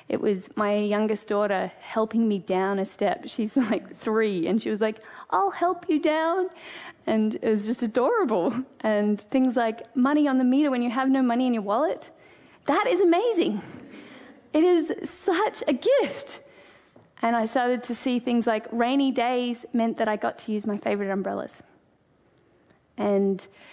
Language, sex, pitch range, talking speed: English, female, 205-260 Hz, 170 wpm